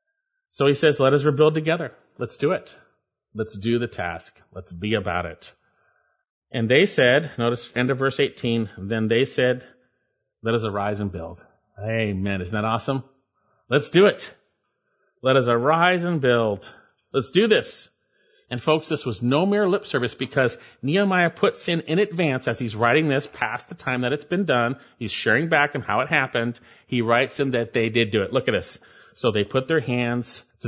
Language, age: English, 40-59